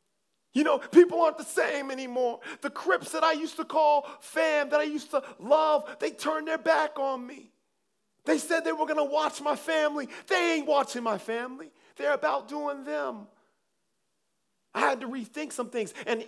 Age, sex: 40-59, male